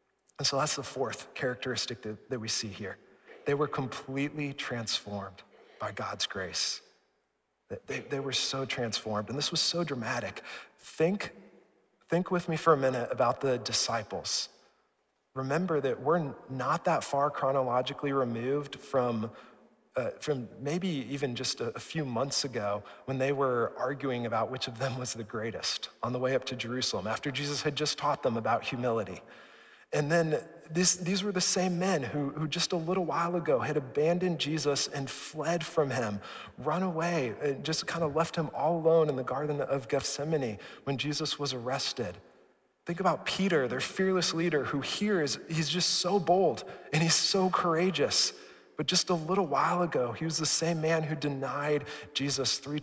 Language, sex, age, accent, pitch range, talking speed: English, male, 40-59, American, 130-170 Hz, 175 wpm